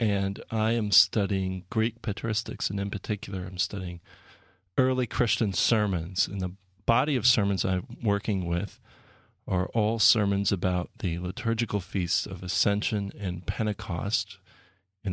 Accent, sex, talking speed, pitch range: American, male, 135 wpm, 95-110 Hz